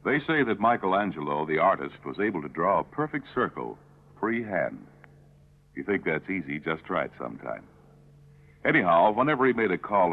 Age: 60-79